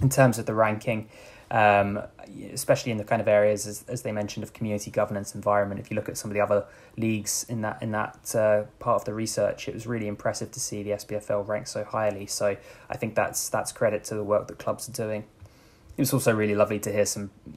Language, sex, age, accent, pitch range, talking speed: English, male, 20-39, British, 105-115 Hz, 240 wpm